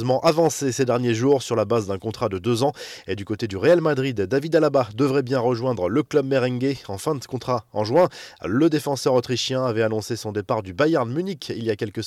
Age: 20-39